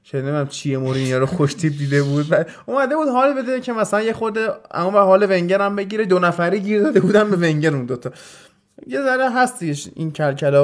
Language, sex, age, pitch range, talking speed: Persian, male, 20-39, 145-205 Hz, 195 wpm